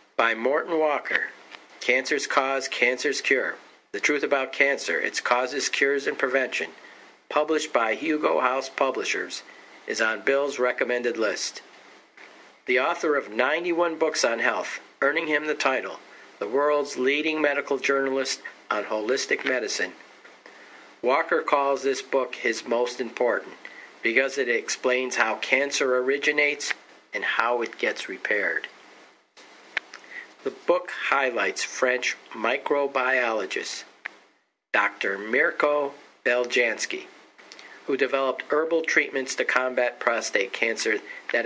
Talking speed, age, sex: 115 wpm, 50-69, male